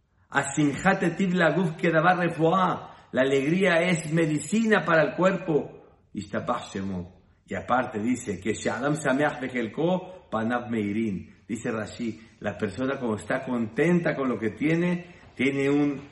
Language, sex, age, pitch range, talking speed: Spanish, male, 50-69, 100-150 Hz, 95 wpm